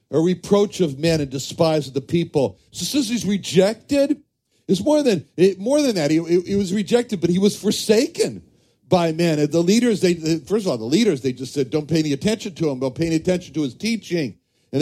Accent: American